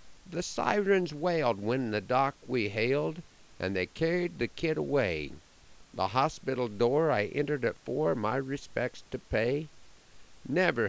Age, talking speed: 50-69, 145 wpm